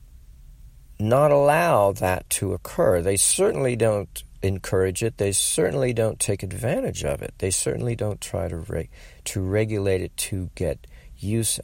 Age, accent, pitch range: 50-69, American, 80-105 Hz